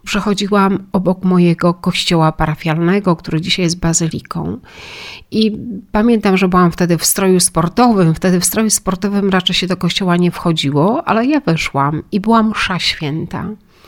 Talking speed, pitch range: 145 wpm, 175-205 Hz